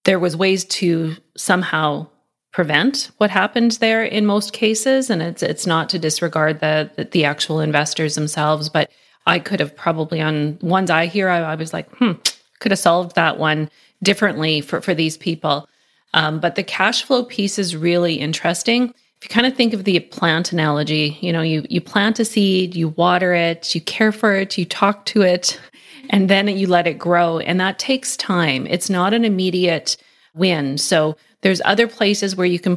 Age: 30-49